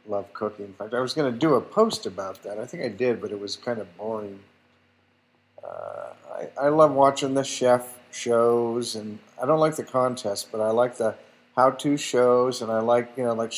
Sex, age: male, 50-69